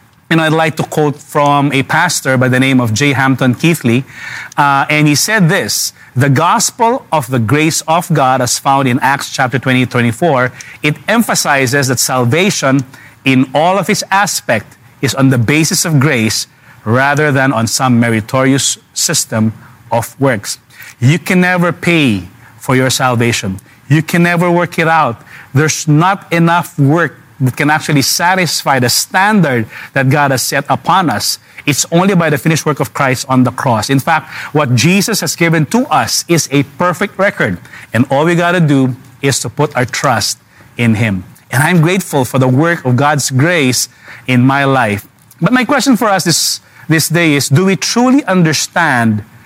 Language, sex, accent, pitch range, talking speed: English, male, Filipino, 125-160 Hz, 180 wpm